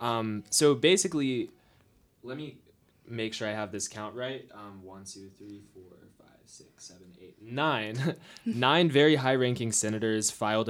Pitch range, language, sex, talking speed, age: 105-130 Hz, English, male, 155 wpm, 20-39